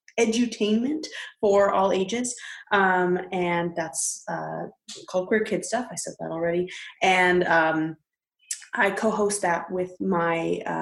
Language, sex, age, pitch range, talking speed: English, female, 20-39, 170-220 Hz, 120 wpm